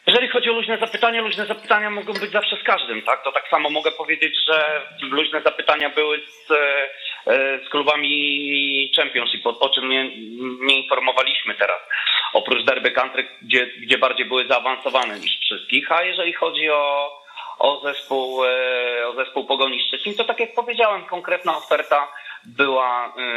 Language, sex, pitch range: Polish, male, 120-160 Hz